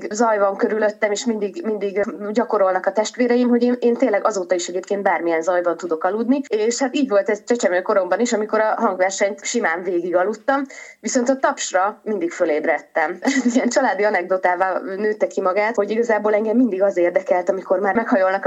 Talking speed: 170 wpm